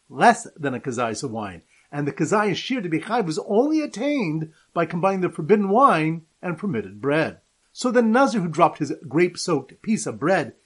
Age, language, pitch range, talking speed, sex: 40-59, English, 155-220 Hz, 185 wpm, male